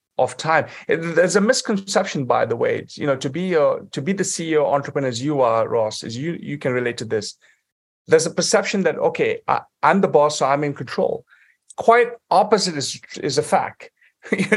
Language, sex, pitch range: English, male, 130-180 Hz